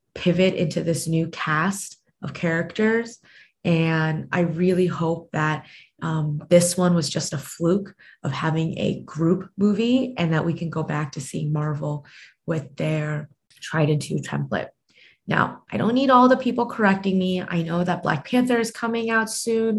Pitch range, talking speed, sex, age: 160-210 Hz, 170 wpm, female, 20-39